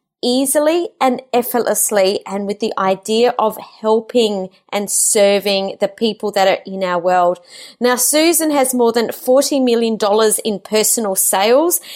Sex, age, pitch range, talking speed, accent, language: female, 30-49, 200-255 Hz, 140 wpm, Australian, English